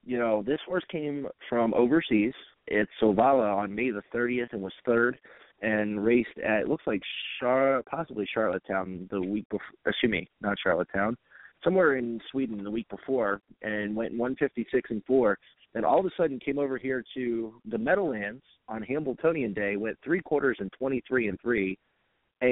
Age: 30-49